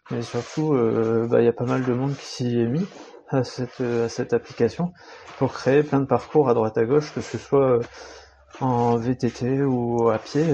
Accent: French